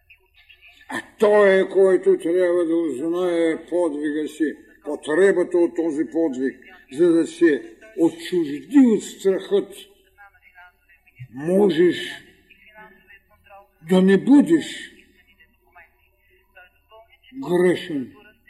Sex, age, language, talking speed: male, 60-79, Bulgarian, 80 wpm